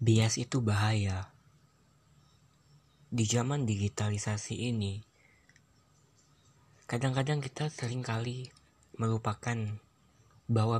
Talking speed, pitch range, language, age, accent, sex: 65 wpm, 105-125 Hz, English, 20-39, Indonesian, male